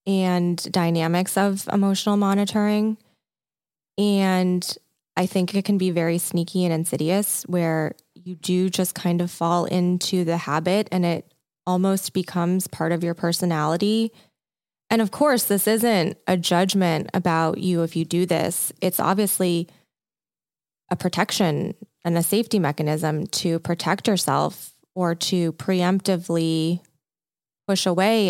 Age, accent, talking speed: 20-39, American, 130 wpm